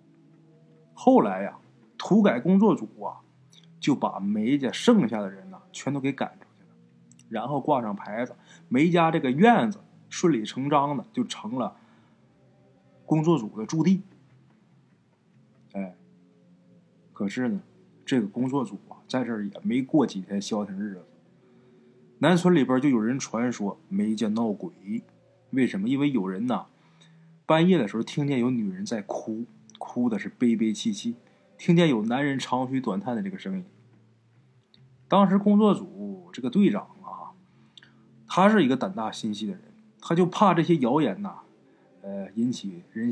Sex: male